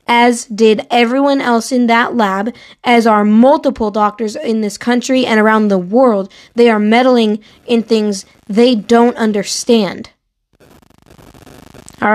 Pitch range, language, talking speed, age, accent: 210-250 Hz, English, 135 wpm, 20-39, American